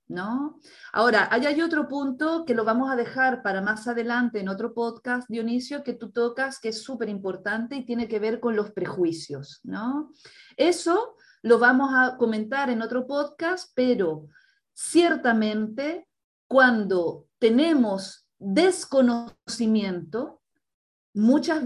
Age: 40-59